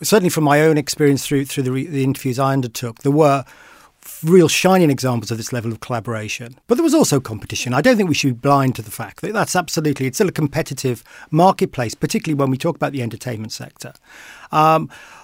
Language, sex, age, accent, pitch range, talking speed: English, male, 40-59, British, 130-160 Hz, 215 wpm